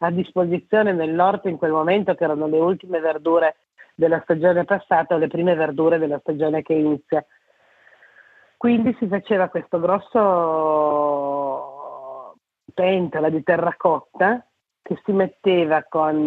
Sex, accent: female, native